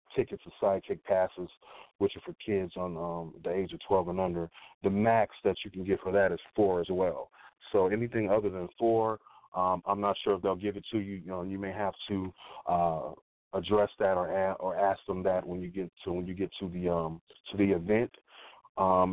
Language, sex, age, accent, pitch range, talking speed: English, male, 30-49, American, 90-105 Hz, 225 wpm